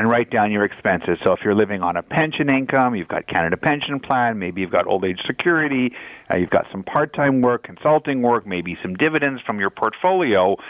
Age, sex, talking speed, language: 50-69, male, 215 wpm, English